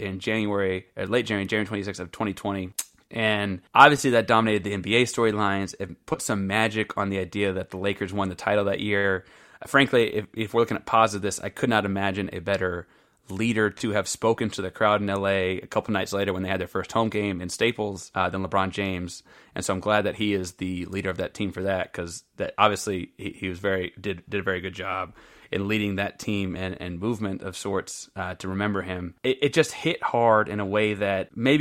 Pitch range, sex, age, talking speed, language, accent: 95-110 Hz, male, 20-39, 235 wpm, English, American